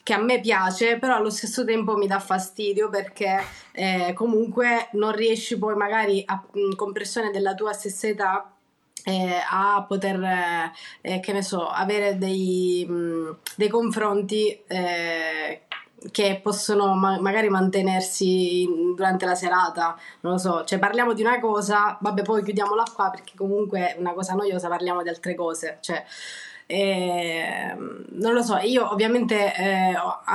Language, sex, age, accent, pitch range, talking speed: Italian, female, 20-39, native, 185-210 Hz, 145 wpm